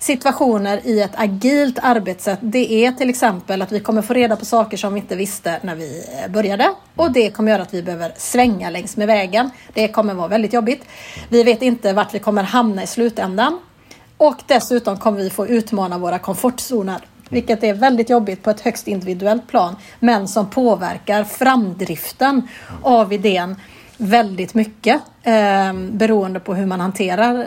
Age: 30-49